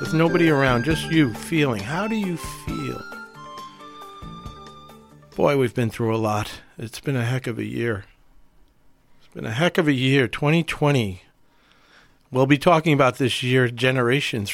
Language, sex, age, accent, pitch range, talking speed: English, male, 50-69, American, 115-155 Hz, 155 wpm